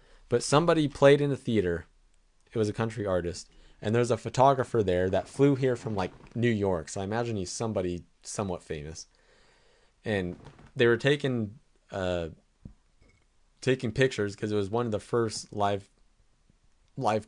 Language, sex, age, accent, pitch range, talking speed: English, male, 20-39, American, 100-135 Hz, 160 wpm